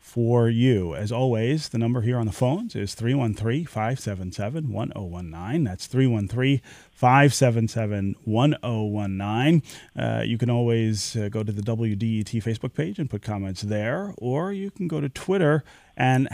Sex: male